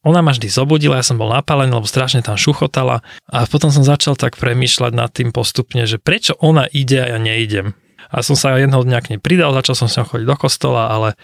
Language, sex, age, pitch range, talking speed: Slovak, male, 20-39, 130-170 Hz, 220 wpm